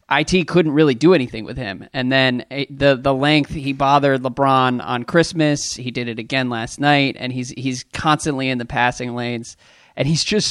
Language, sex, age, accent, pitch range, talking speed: English, male, 20-39, American, 130-150 Hz, 195 wpm